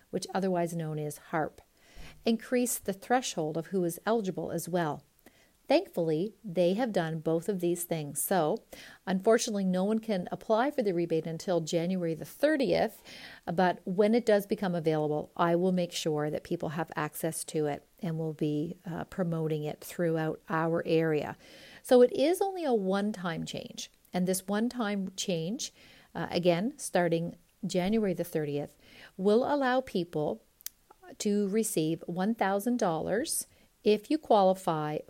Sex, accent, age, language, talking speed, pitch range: female, American, 50-69, English, 145 wpm, 165-215 Hz